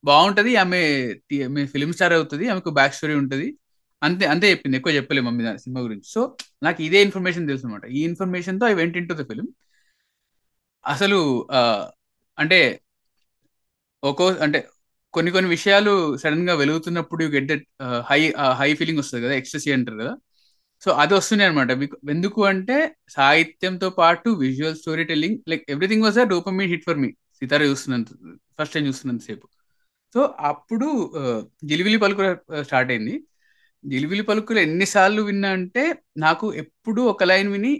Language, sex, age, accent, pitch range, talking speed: Telugu, male, 20-39, native, 140-195 Hz, 145 wpm